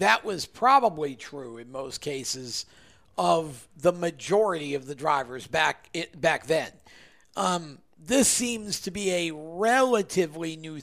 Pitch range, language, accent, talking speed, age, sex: 155-205 Hz, English, American, 140 wpm, 50-69, male